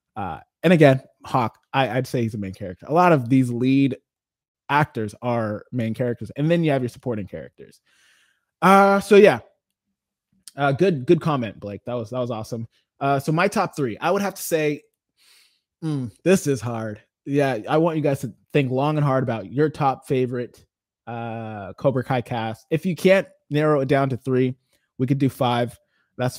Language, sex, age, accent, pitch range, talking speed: English, male, 20-39, American, 120-155 Hz, 195 wpm